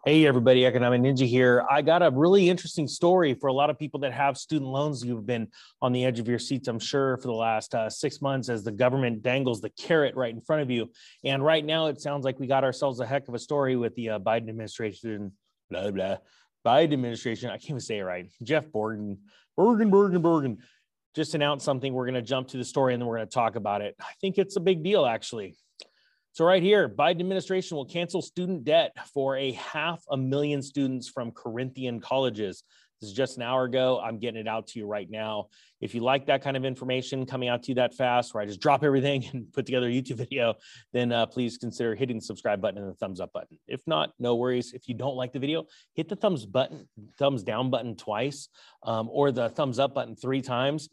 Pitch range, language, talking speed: 120-145 Hz, English, 235 wpm